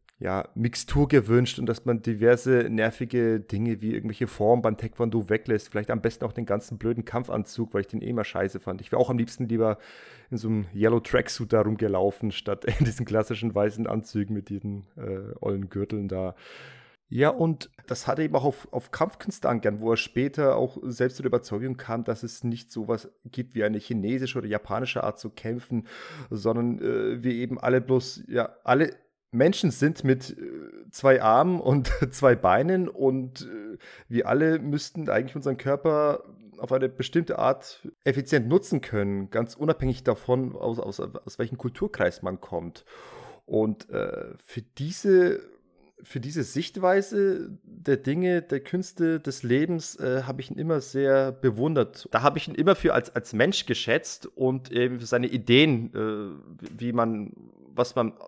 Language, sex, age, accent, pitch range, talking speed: German, male, 30-49, German, 110-140 Hz, 170 wpm